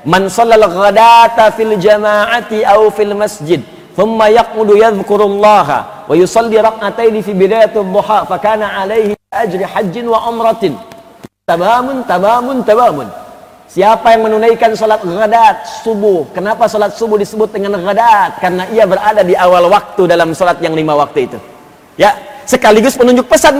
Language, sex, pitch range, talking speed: Indonesian, male, 205-285 Hz, 90 wpm